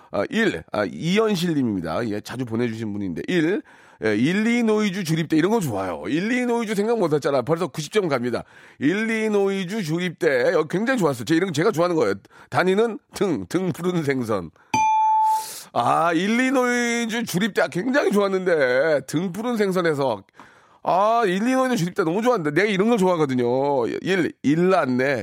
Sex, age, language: male, 40-59, Korean